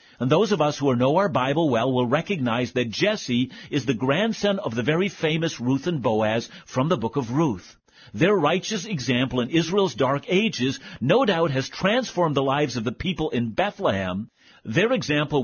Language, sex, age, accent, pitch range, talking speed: English, male, 50-69, American, 125-185 Hz, 185 wpm